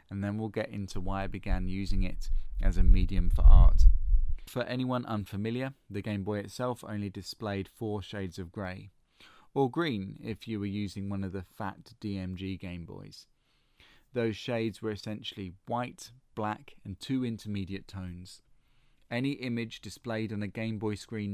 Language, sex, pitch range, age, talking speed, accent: English, male, 95-115 Hz, 30-49, 165 wpm, British